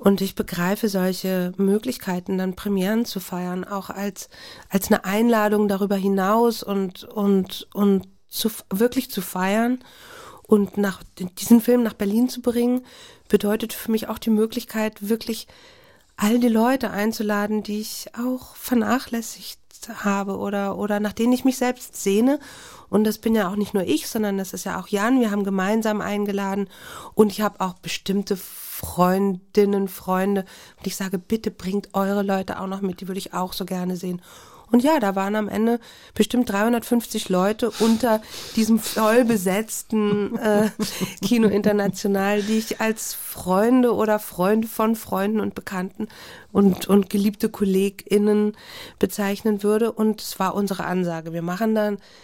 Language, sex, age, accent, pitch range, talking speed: German, female, 40-59, German, 195-225 Hz, 155 wpm